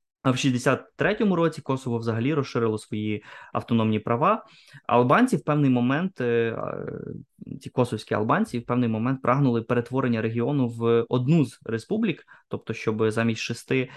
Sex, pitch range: male, 110-130 Hz